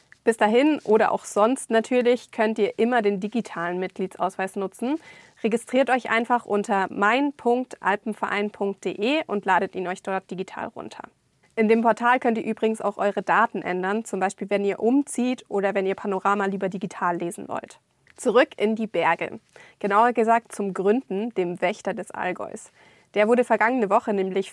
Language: German